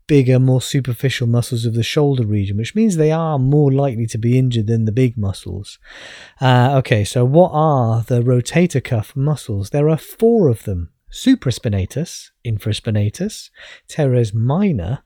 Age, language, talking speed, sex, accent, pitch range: 30-49, English, 155 wpm, male, British, 125-160 Hz